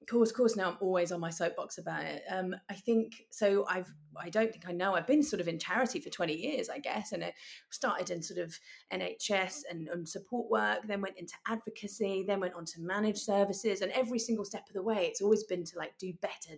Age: 30-49